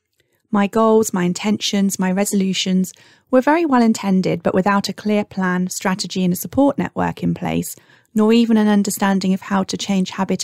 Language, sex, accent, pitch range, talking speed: English, female, British, 185-225 Hz, 180 wpm